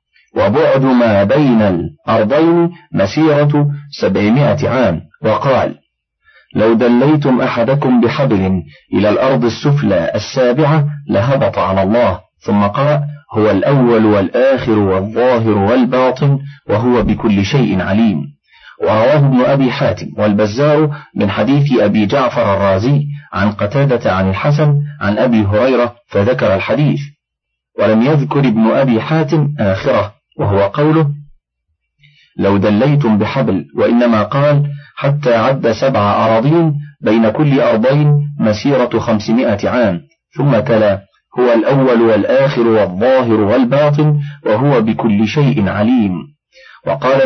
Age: 40-59